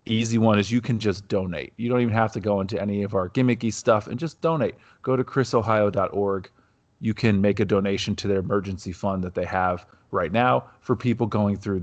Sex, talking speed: male, 220 wpm